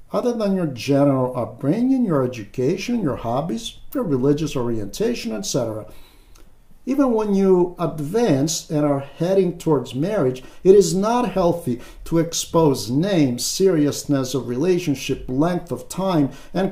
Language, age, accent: English, 50-69, American